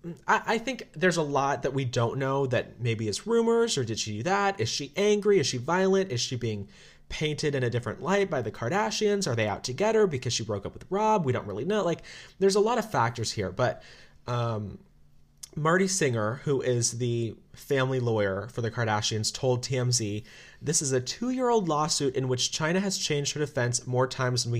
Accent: American